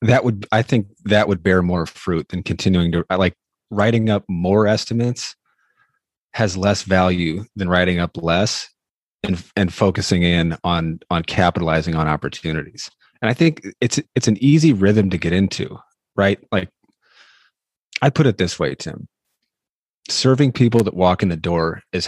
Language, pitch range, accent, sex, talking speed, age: English, 85-105 Hz, American, male, 165 wpm, 30-49